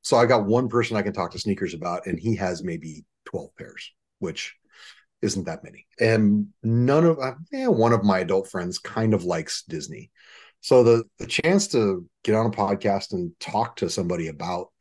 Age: 30-49